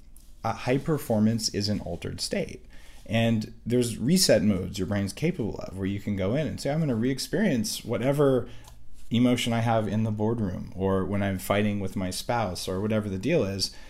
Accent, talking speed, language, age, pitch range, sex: American, 195 wpm, English, 40-59, 100-140 Hz, male